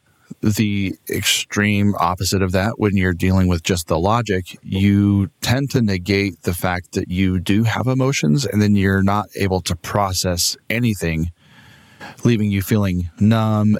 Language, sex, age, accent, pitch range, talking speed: English, male, 30-49, American, 95-110 Hz, 150 wpm